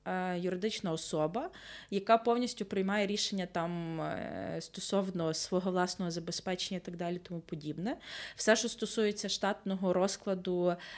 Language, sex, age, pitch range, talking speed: Ukrainian, female, 20-39, 170-200 Hz, 115 wpm